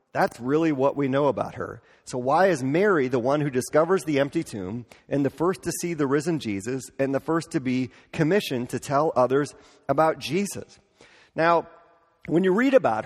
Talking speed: 195 wpm